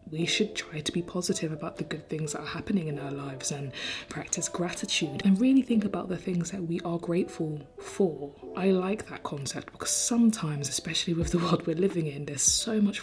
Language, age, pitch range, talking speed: English, 20-39, 155-200 Hz, 210 wpm